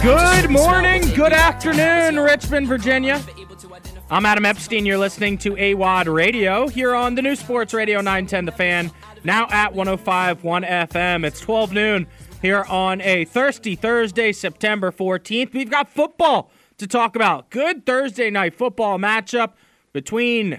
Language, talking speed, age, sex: English, 145 wpm, 20-39, male